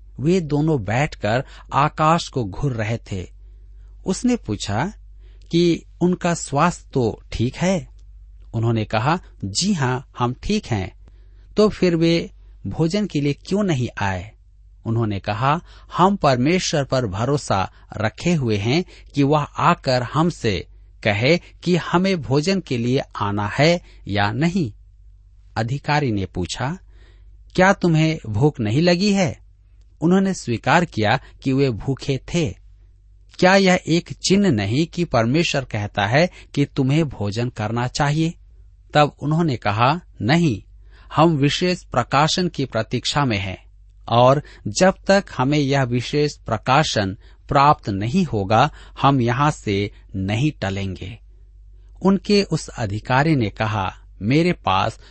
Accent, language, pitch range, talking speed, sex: native, Hindi, 100-160 Hz, 130 wpm, male